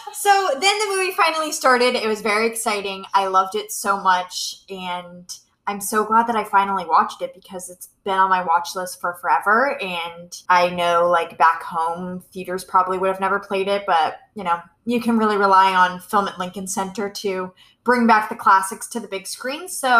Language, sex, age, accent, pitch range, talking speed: English, female, 20-39, American, 190-245 Hz, 205 wpm